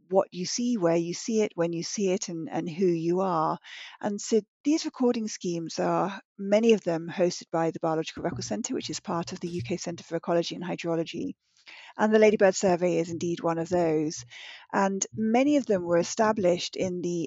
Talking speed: 205 wpm